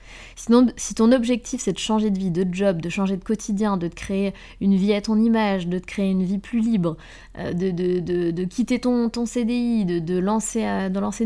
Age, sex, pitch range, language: 20-39, female, 175-220 Hz, French